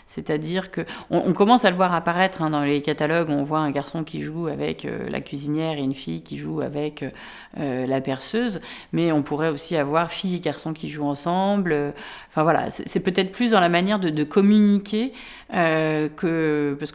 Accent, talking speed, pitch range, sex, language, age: French, 205 wpm, 150-190 Hz, female, French, 30-49